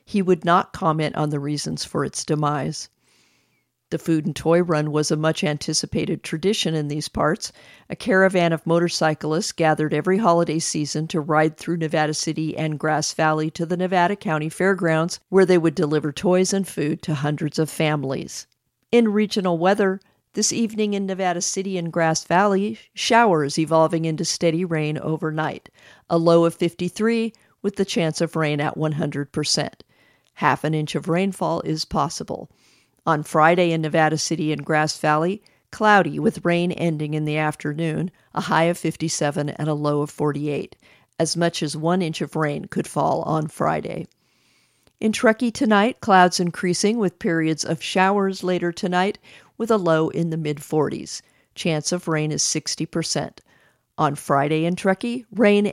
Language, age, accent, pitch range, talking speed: English, 50-69, American, 155-185 Hz, 165 wpm